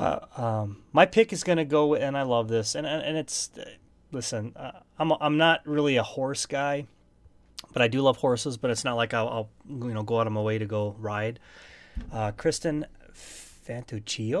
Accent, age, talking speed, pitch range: American, 30-49, 210 wpm, 115-155 Hz